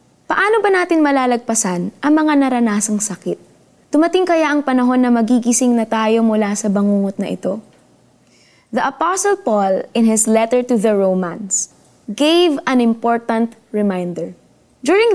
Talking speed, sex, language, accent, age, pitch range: 140 wpm, female, Filipino, native, 20-39, 220-290 Hz